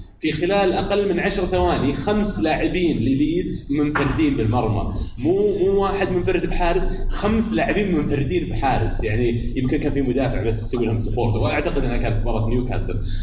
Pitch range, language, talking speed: 110-140 Hz, Arabic, 155 wpm